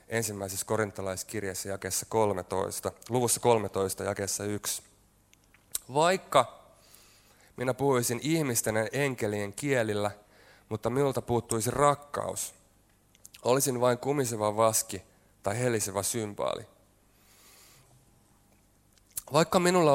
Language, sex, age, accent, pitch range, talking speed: Finnish, male, 30-49, native, 100-125 Hz, 80 wpm